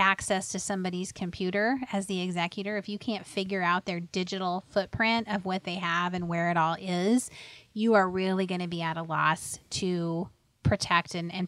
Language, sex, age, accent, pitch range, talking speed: English, female, 30-49, American, 175-210 Hz, 195 wpm